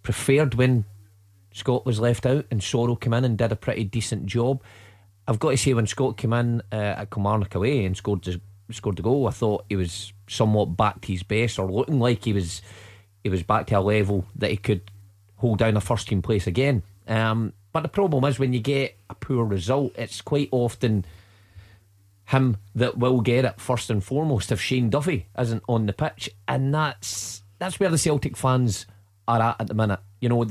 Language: English